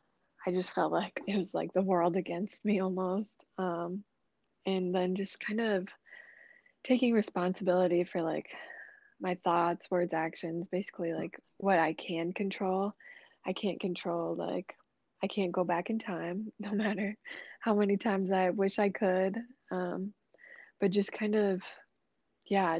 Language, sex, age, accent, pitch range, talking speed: English, female, 20-39, American, 175-205 Hz, 150 wpm